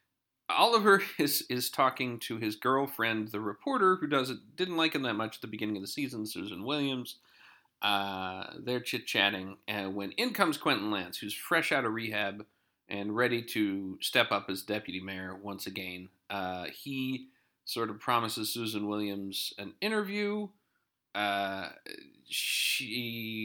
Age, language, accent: 40-59, English, American